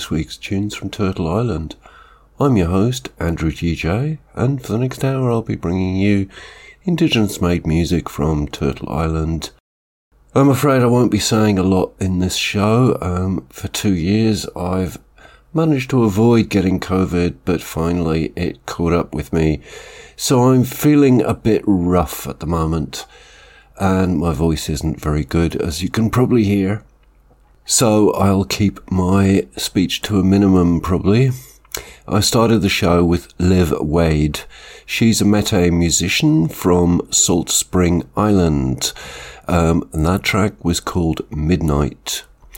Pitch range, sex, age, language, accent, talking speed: 85-110 Hz, male, 50-69, English, British, 145 wpm